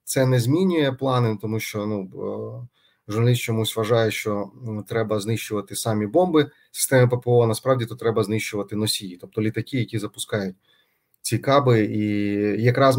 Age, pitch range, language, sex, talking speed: 30-49, 110-130 Hz, Ukrainian, male, 140 wpm